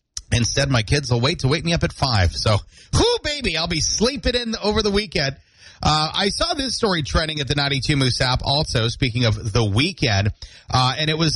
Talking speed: 215 wpm